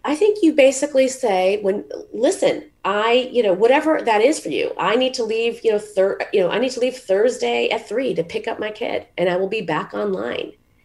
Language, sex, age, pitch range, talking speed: English, female, 30-49, 165-260 Hz, 230 wpm